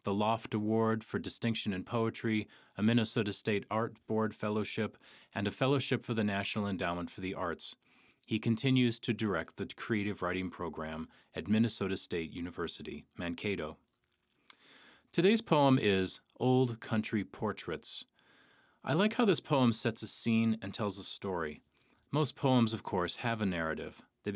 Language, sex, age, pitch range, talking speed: English, male, 30-49, 95-115 Hz, 155 wpm